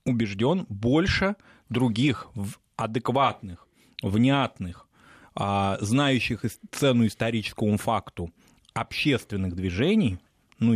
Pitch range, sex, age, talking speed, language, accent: 95-120 Hz, male, 20-39, 65 wpm, Russian, native